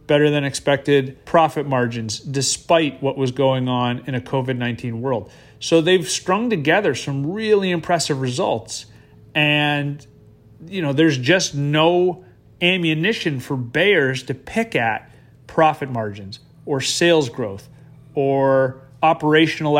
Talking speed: 125 wpm